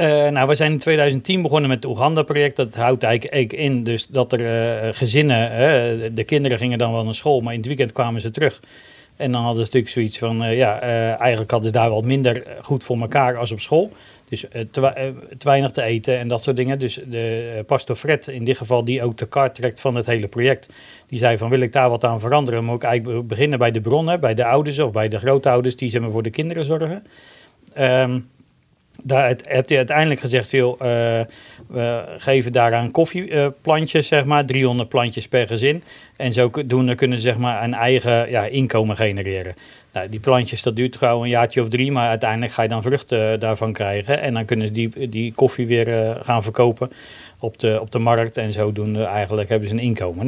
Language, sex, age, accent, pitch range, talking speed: Dutch, male, 40-59, Dutch, 115-135 Hz, 215 wpm